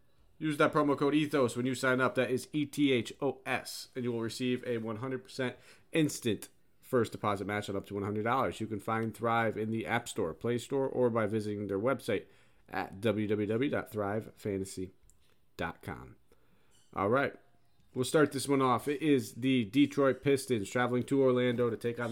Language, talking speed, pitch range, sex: English, 165 wpm, 105-135 Hz, male